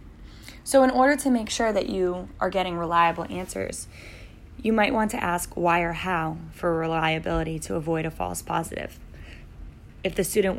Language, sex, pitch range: English, female, 160-200 Hz